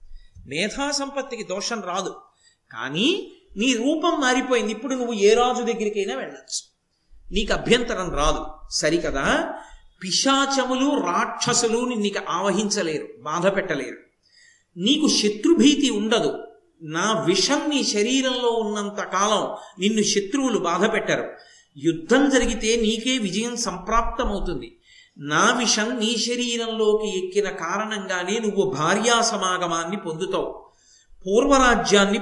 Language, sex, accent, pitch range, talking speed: Telugu, male, native, 195-250 Hz, 95 wpm